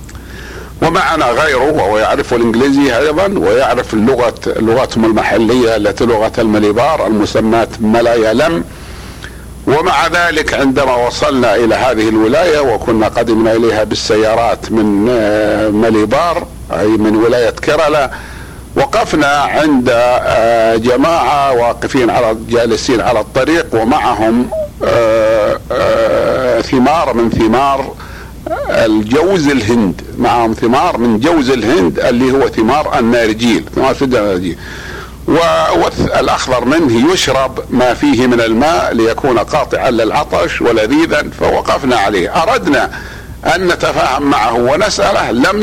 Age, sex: 50-69, male